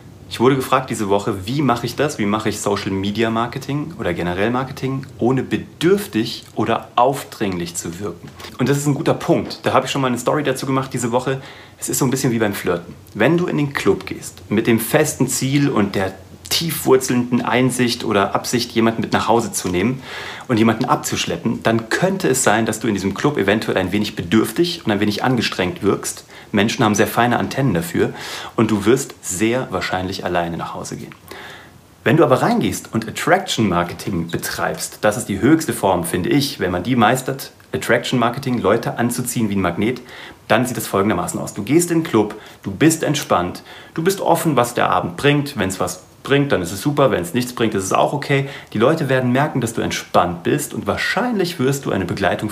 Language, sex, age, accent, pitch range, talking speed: German, male, 40-59, German, 105-135 Hz, 205 wpm